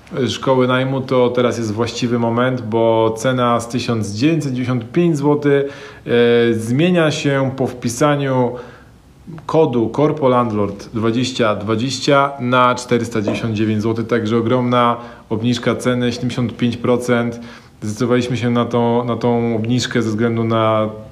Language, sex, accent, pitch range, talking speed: Polish, male, native, 110-130 Hz, 105 wpm